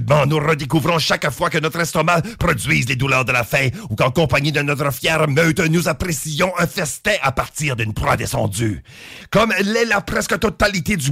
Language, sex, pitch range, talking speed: English, male, 140-185 Hz, 195 wpm